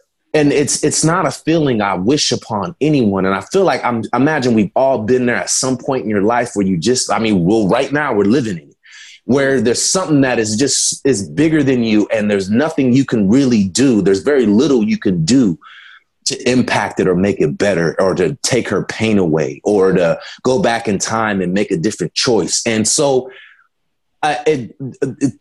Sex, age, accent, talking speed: male, 30-49, American, 215 wpm